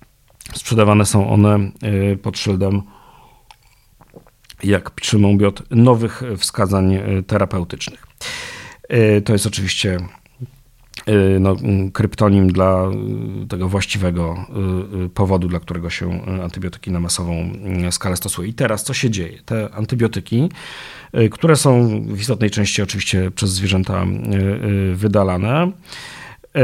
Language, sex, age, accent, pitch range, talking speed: Polish, male, 40-59, native, 95-120 Hz, 95 wpm